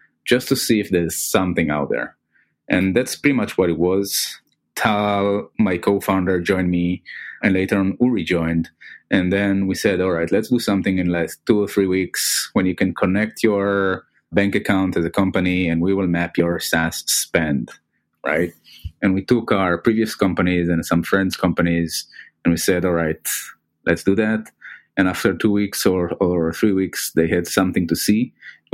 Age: 30-49